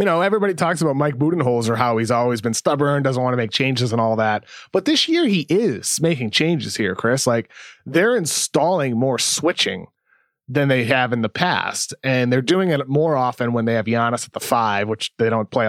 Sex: male